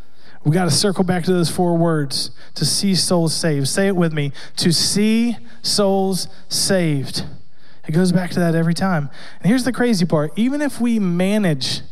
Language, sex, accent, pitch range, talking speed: English, male, American, 155-195 Hz, 185 wpm